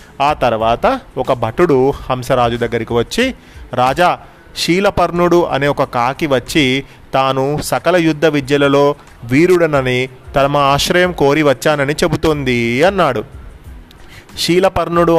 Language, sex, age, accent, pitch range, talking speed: Telugu, male, 30-49, native, 130-160 Hz, 100 wpm